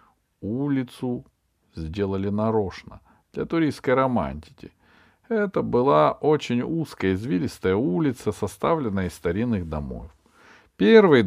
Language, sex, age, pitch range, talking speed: Russian, male, 40-59, 95-140 Hz, 90 wpm